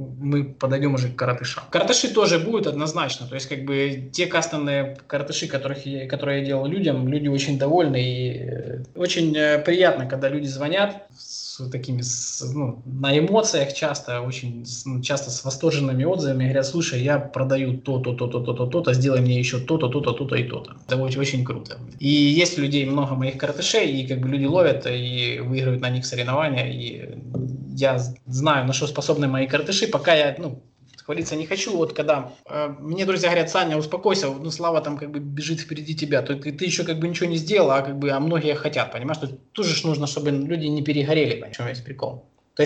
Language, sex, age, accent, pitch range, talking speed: Russian, male, 20-39, native, 130-160 Hz, 195 wpm